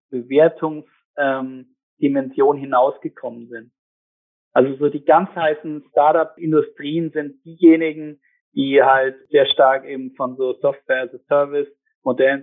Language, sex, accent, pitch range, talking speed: German, male, German, 130-195 Hz, 95 wpm